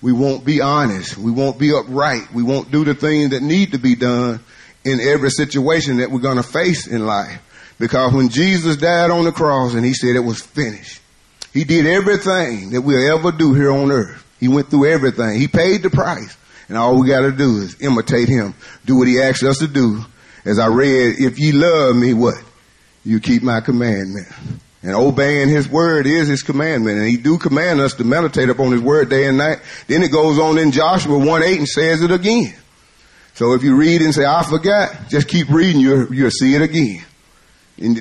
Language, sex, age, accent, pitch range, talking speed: English, male, 30-49, American, 125-155 Hz, 215 wpm